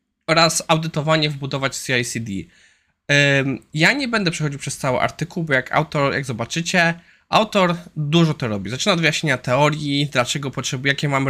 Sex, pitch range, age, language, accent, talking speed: male, 135-190 Hz, 20-39, Polish, native, 140 wpm